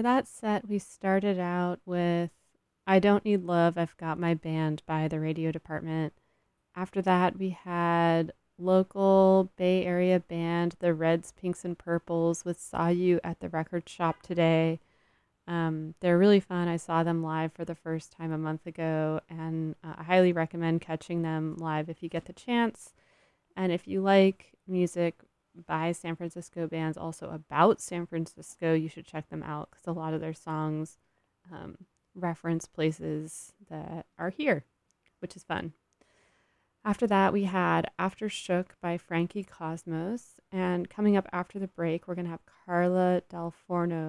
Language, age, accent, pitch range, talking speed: English, 30-49, American, 160-185 Hz, 165 wpm